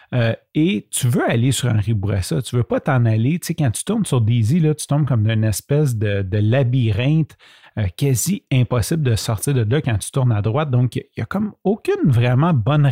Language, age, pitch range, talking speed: French, 30-49, 115-155 Hz, 235 wpm